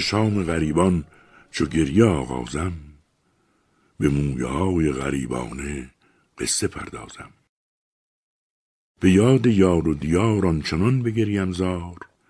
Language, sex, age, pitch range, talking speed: Persian, male, 60-79, 75-100 Hz, 95 wpm